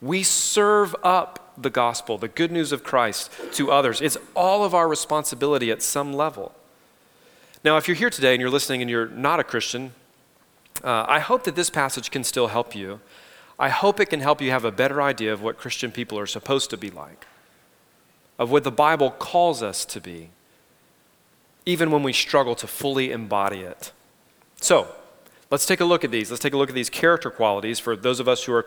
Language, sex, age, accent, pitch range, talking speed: English, male, 30-49, American, 115-155 Hz, 205 wpm